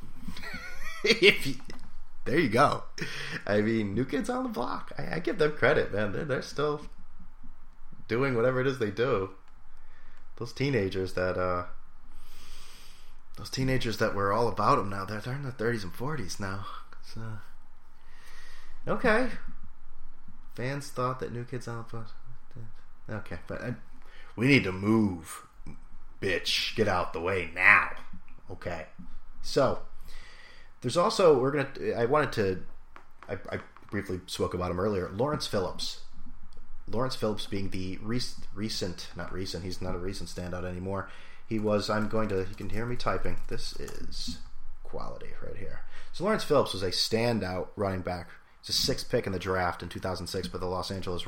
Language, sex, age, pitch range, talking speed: English, male, 30-49, 90-115 Hz, 160 wpm